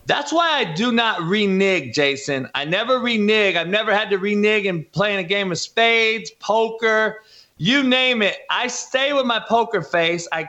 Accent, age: American, 30-49